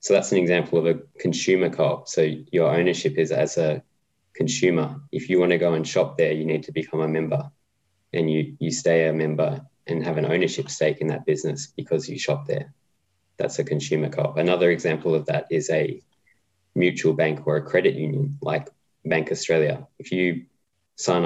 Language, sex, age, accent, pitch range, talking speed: English, male, 20-39, Australian, 80-90 Hz, 190 wpm